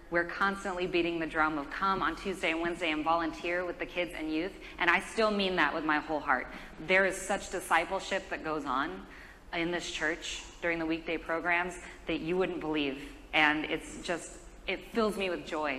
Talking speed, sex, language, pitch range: 200 wpm, female, English, 165-195 Hz